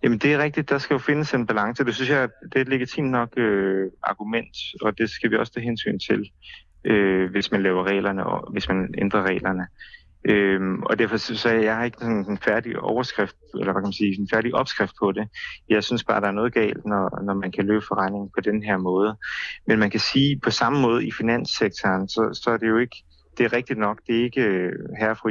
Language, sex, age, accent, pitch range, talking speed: Danish, male, 30-49, native, 95-115 Hz, 240 wpm